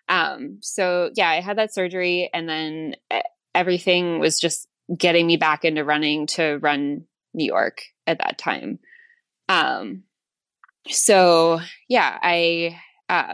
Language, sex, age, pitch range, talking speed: English, female, 20-39, 150-175 Hz, 130 wpm